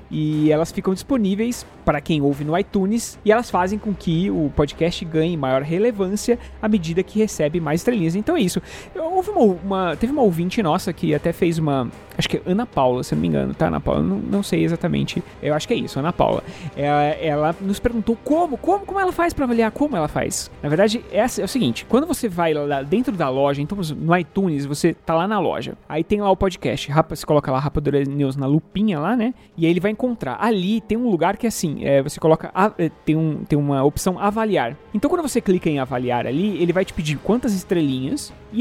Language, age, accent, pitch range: Portuguese, 20-39, Brazilian, 155-220 Hz